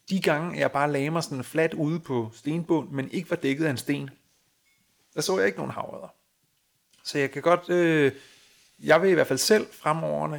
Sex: male